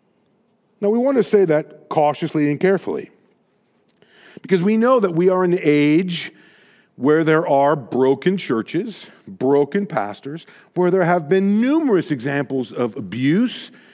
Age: 50-69